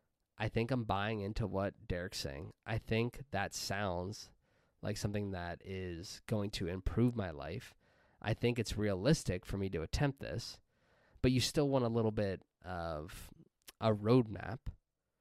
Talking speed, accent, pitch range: 160 wpm, American, 95-120 Hz